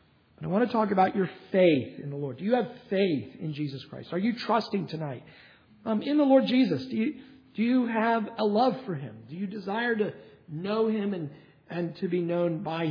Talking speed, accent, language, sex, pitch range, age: 225 wpm, American, English, male, 145-210 Hz, 50-69